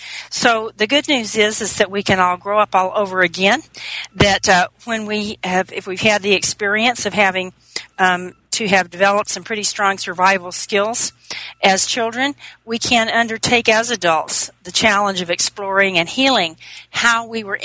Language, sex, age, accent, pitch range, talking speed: English, female, 40-59, American, 185-215 Hz, 175 wpm